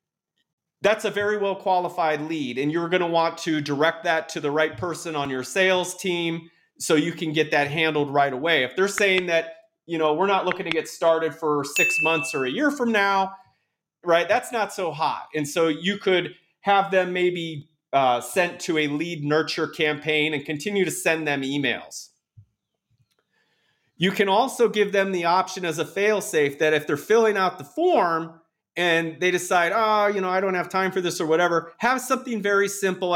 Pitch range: 155-190 Hz